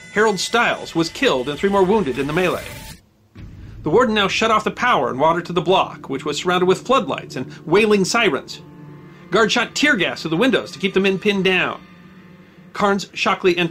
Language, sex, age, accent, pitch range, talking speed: English, male, 40-59, American, 165-230 Hz, 205 wpm